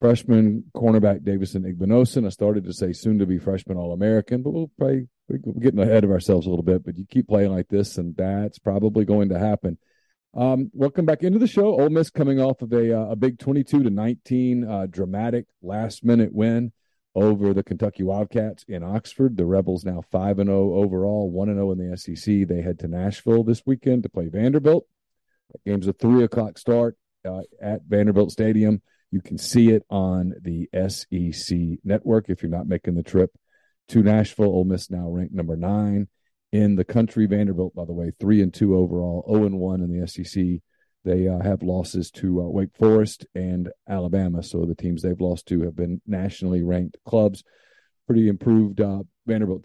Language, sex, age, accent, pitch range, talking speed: English, male, 40-59, American, 90-110 Hz, 195 wpm